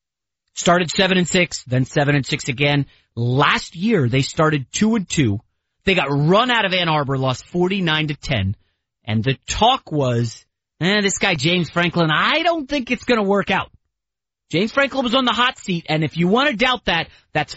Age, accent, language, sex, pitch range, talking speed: 30-49, American, English, male, 130-195 Hz, 200 wpm